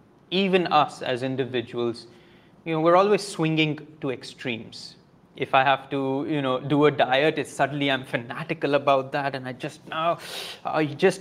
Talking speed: 170 wpm